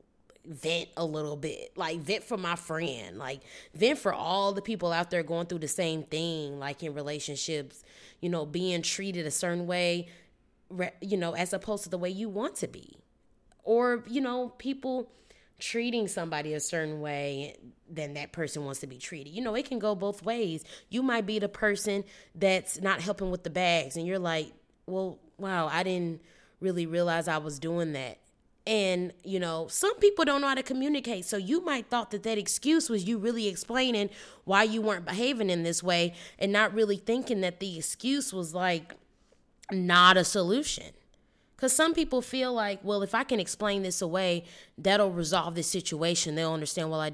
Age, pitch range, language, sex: 20-39, 170-220 Hz, English, female